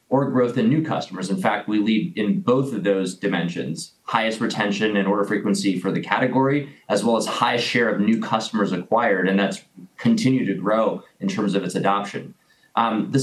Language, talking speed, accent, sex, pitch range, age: English, 195 wpm, American, male, 100-135 Hz, 20-39